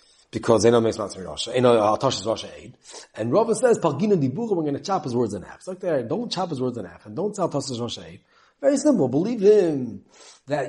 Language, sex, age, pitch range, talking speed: English, male, 30-49, 140-225 Hz, 255 wpm